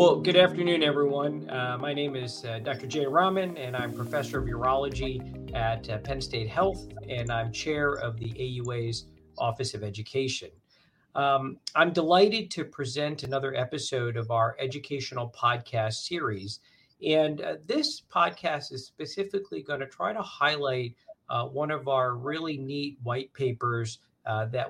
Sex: male